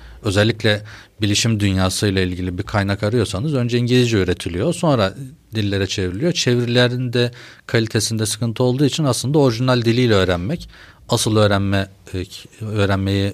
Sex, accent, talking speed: male, native, 110 wpm